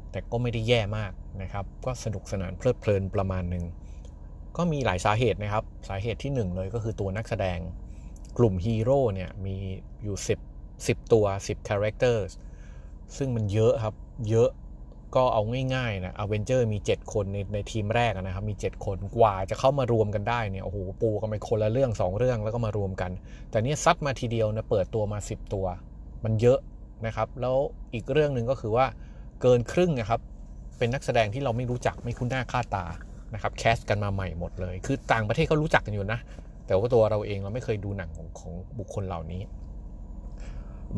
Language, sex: Thai, male